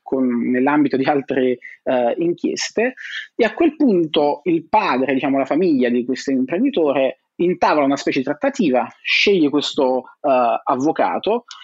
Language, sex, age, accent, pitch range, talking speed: Italian, male, 30-49, native, 130-190 Hz, 140 wpm